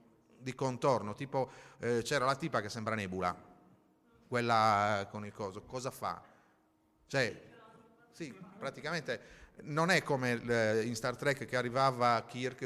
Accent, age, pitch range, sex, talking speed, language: native, 30-49, 105-125 Hz, male, 140 wpm, Italian